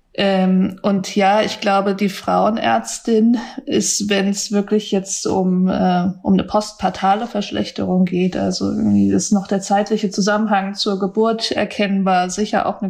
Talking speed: 150 wpm